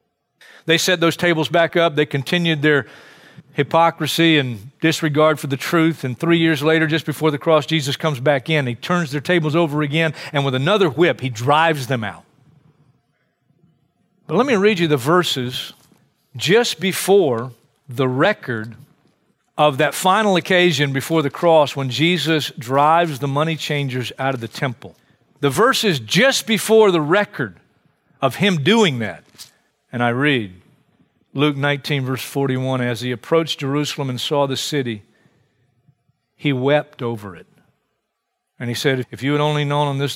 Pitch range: 125-160 Hz